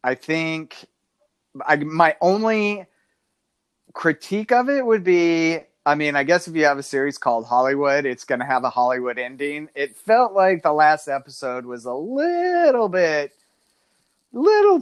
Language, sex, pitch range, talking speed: English, male, 120-155 Hz, 155 wpm